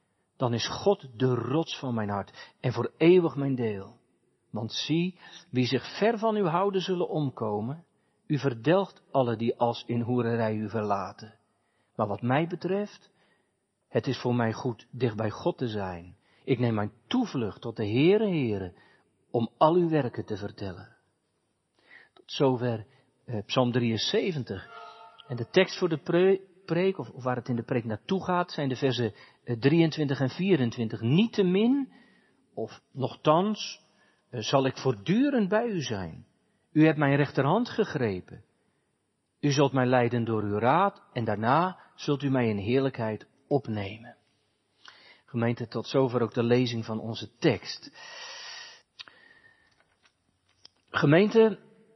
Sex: male